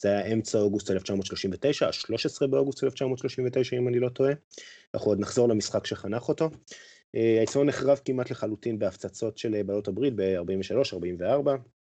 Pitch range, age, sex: 95-120 Hz, 30-49, male